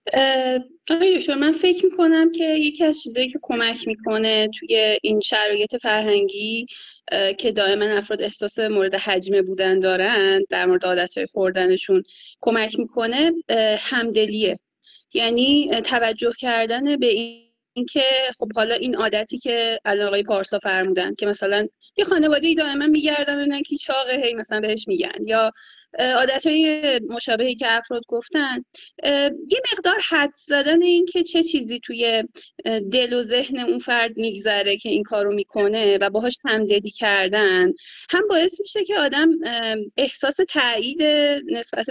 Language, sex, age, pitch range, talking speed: Persian, female, 30-49, 215-310 Hz, 130 wpm